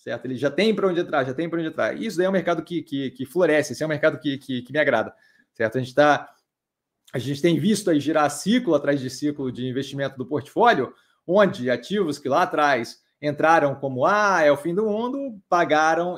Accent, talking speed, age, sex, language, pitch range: Brazilian, 230 wpm, 30-49, male, Portuguese, 145-185 Hz